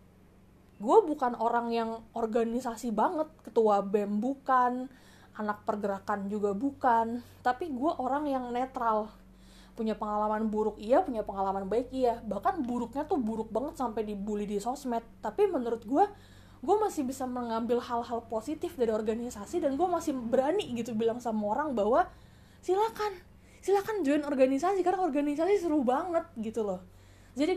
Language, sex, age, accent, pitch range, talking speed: Indonesian, female, 20-39, native, 215-265 Hz, 145 wpm